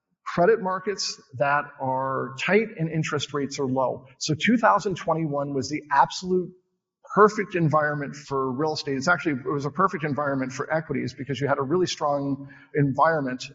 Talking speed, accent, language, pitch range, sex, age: 160 wpm, American, English, 135-170 Hz, male, 40-59